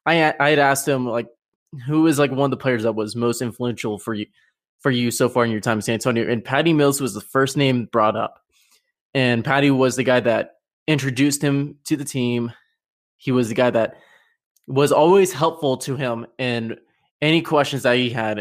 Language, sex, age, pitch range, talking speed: English, male, 20-39, 125-160 Hz, 210 wpm